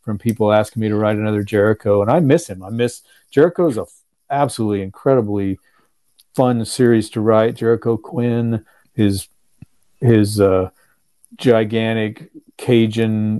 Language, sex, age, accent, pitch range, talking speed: English, male, 40-59, American, 105-120 Hz, 135 wpm